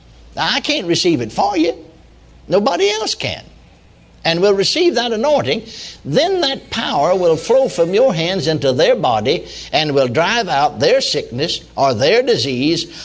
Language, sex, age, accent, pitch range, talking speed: English, male, 60-79, American, 115-175 Hz, 155 wpm